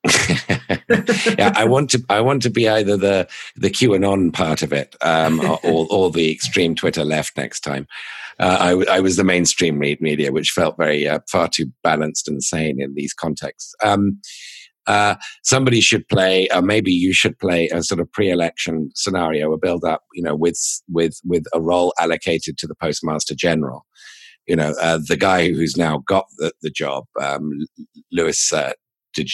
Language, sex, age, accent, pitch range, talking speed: English, male, 50-69, British, 80-100 Hz, 185 wpm